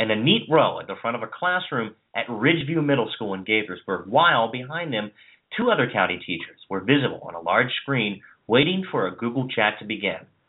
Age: 40-59